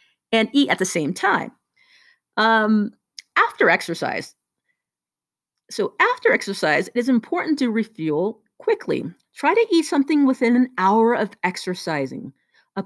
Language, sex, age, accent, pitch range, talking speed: English, female, 40-59, American, 210-275 Hz, 130 wpm